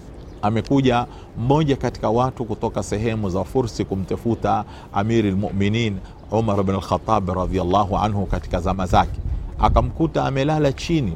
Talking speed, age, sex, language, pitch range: 120 wpm, 40-59, male, Swahili, 100-130 Hz